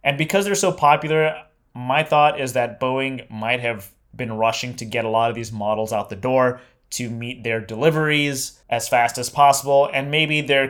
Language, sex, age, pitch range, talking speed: English, male, 20-39, 110-140 Hz, 195 wpm